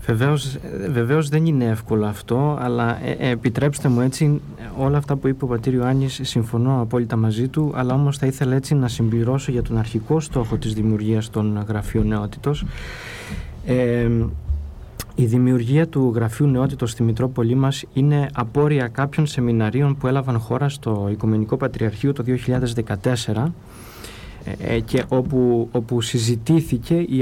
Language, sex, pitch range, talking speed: Greek, male, 115-140 Hz, 140 wpm